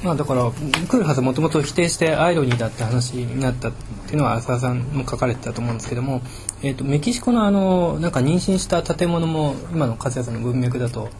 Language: Japanese